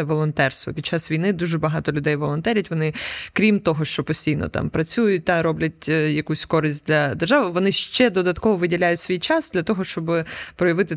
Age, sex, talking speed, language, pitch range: 20-39, female, 170 wpm, Ukrainian, 155-205 Hz